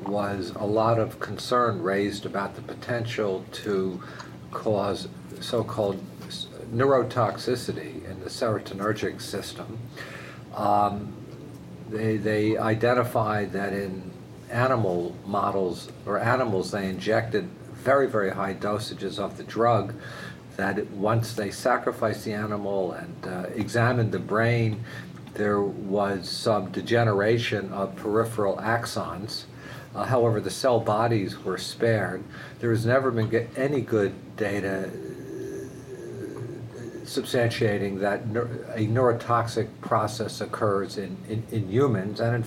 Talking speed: 115 wpm